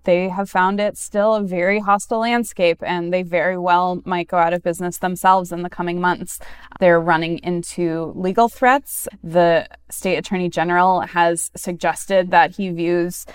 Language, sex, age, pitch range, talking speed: English, female, 20-39, 175-205 Hz, 165 wpm